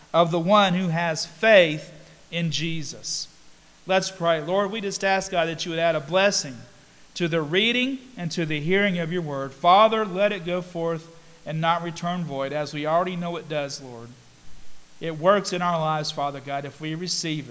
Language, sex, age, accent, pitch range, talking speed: English, male, 40-59, American, 155-205 Hz, 195 wpm